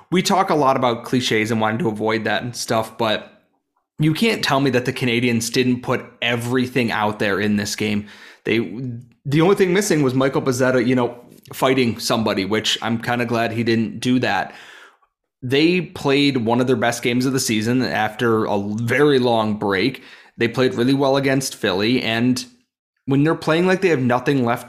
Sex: male